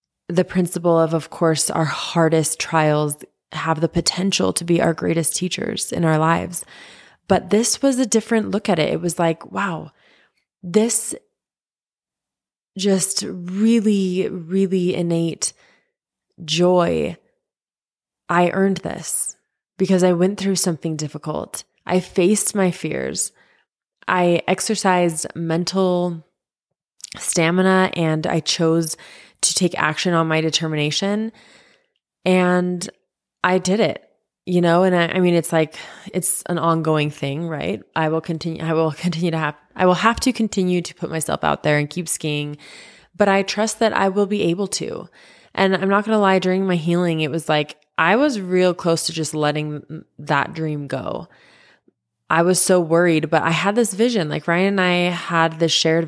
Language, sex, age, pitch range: English, female, 20-39, 160-190 Hz